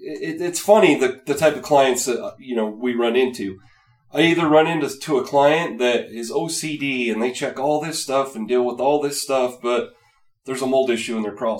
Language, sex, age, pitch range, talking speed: English, male, 30-49, 110-150 Hz, 230 wpm